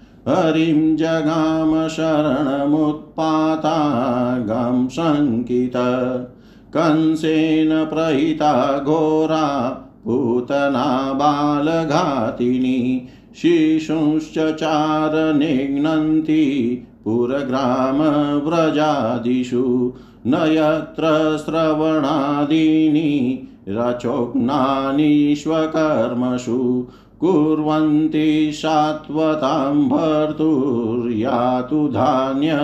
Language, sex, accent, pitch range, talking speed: Hindi, male, native, 125-155 Hz, 30 wpm